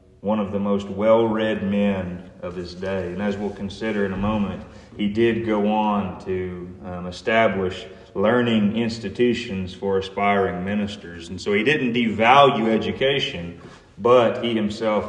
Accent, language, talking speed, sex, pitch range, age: American, English, 145 wpm, male, 100-125 Hz, 30-49